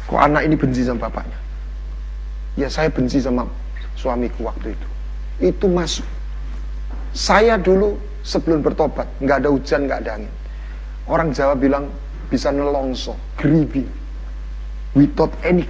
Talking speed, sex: 130 wpm, male